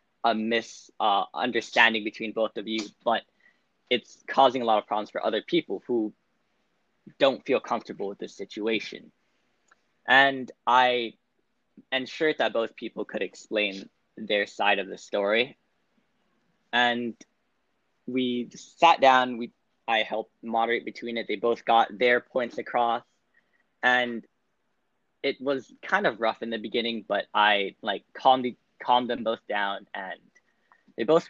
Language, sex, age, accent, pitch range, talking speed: English, male, 10-29, American, 115-140 Hz, 140 wpm